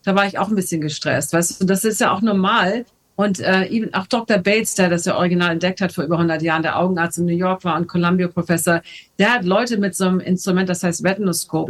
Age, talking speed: 50-69, 250 wpm